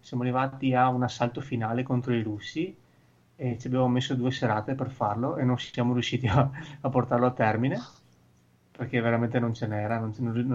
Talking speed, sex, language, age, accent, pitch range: 195 wpm, male, Italian, 30-49, native, 115-130 Hz